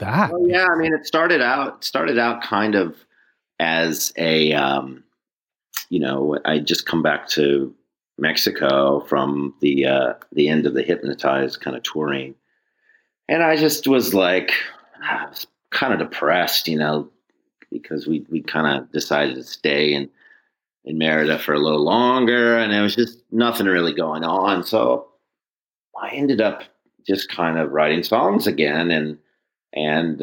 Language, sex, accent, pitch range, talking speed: English, male, American, 80-120 Hz, 155 wpm